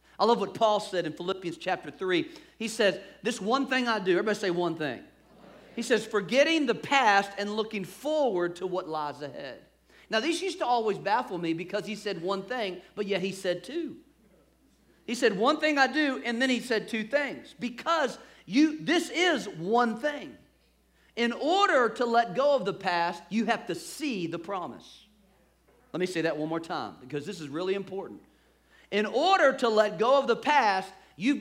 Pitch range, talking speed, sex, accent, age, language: 180-245 Hz, 195 wpm, male, American, 40-59, English